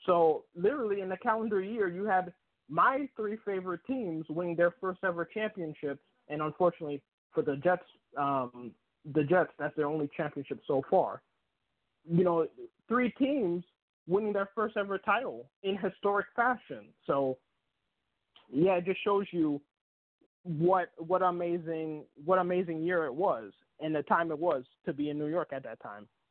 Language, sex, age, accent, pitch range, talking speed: English, male, 20-39, American, 160-195 Hz, 160 wpm